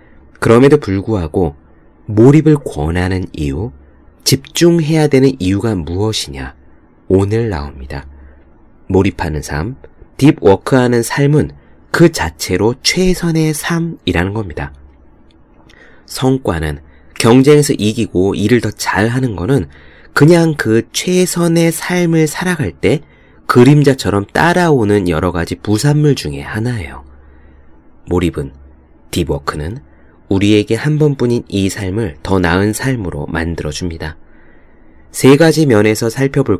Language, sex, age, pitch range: Korean, male, 30-49, 80-130 Hz